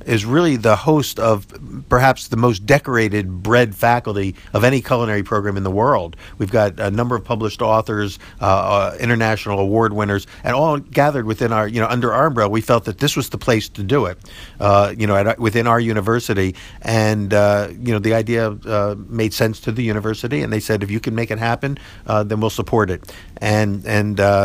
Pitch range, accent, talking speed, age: 100-120 Hz, American, 205 wpm, 50-69